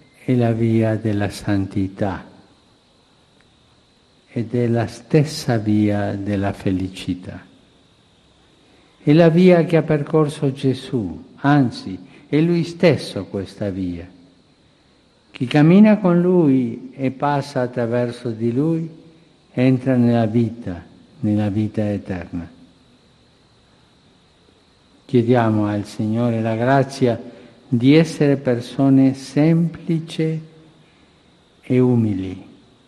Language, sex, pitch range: Italian, male, 110-140 Hz